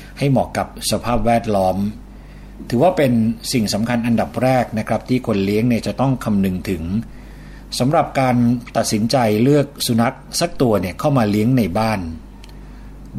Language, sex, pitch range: Thai, male, 100-125 Hz